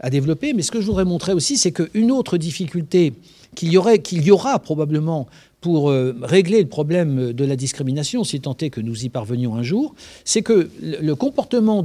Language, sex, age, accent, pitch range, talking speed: French, male, 60-79, French, 125-185 Hz, 205 wpm